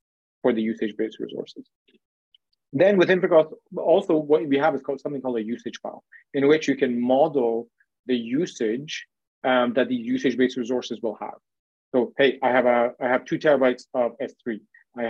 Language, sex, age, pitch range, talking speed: English, male, 30-49, 125-155 Hz, 175 wpm